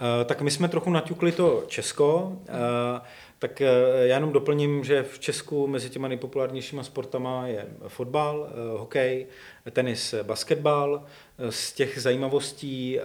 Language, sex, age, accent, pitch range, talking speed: Czech, male, 40-59, native, 120-140 Hz, 120 wpm